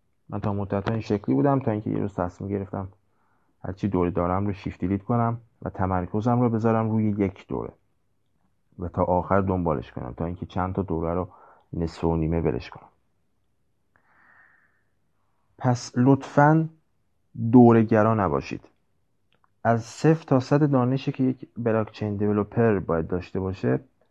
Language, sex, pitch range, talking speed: Persian, male, 95-120 Hz, 145 wpm